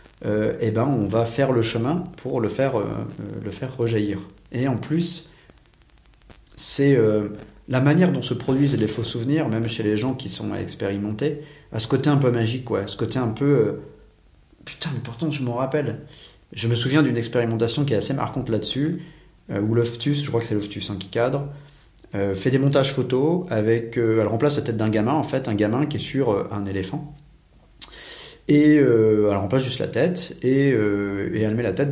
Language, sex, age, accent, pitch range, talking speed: French, male, 40-59, French, 105-140 Hz, 210 wpm